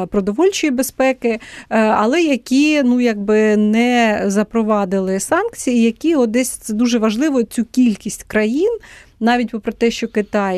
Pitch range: 205-245 Hz